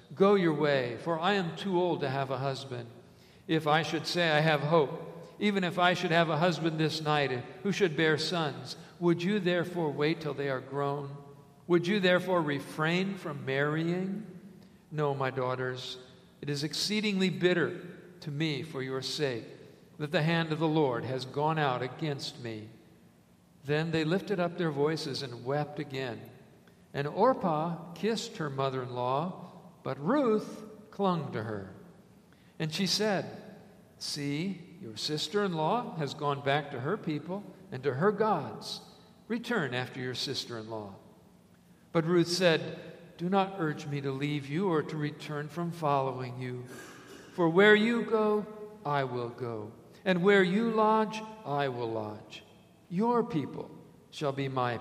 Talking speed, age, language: 160 wpm, 50-69, English